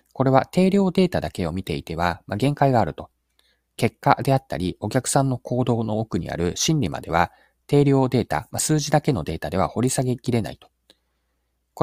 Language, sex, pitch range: Japanese, male, 85-135 Hz